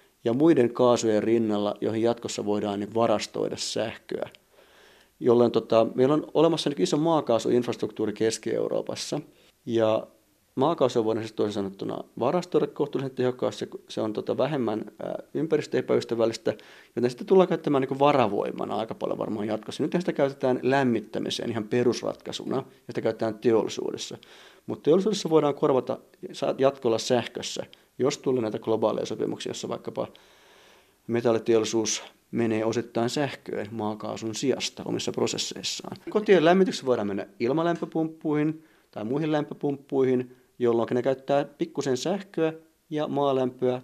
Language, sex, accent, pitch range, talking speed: Finnish, male, native, 115-155 Hz, 120 wpm